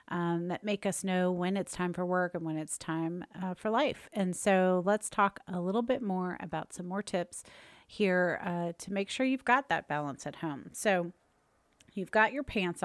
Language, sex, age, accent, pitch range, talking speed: English, female, 30-49, American, 170-215 Hz, 210 wpm